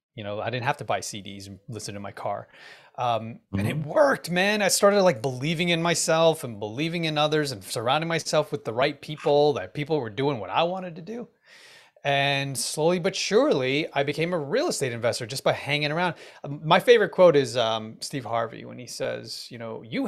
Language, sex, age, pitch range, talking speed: English, male, 30-49, 115-160 Hz, 210 wpm